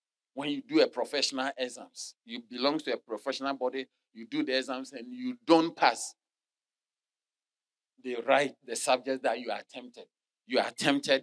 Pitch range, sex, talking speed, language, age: 135-230 Hz, male, 155 wpm, English, 40-59